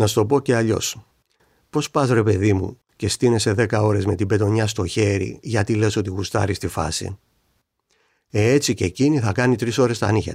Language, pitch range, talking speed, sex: Greek, 90-115 Hz, 210 wpm, male